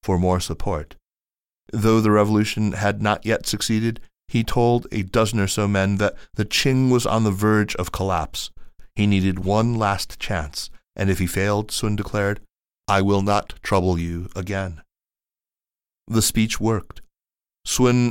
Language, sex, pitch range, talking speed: English, male, 90-105 Hz, 155 wpm